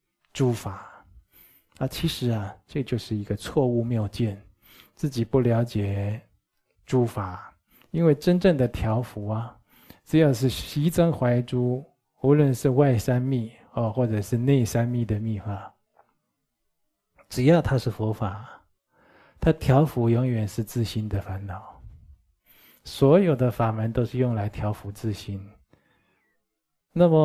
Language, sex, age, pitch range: Chinese, male, 20-39, 110-135 Hz